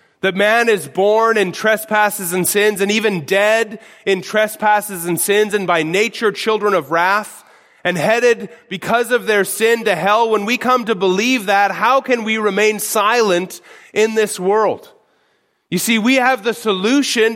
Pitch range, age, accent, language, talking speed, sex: 205-235 Hz, 30-49, American, English, 170 wpm, male